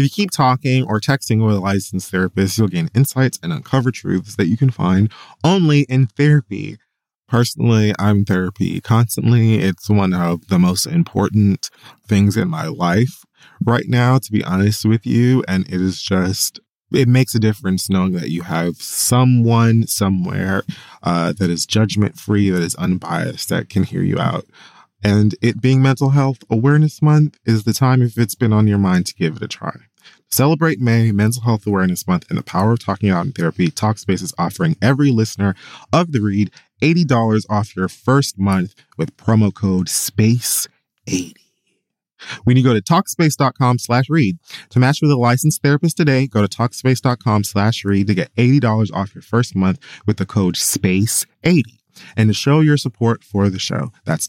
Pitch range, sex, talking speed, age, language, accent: 100-130 Hz, male, 180 wpm, 20-39, English, American